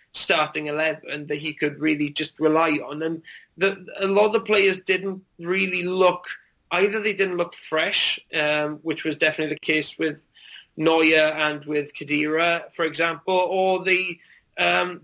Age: 30-49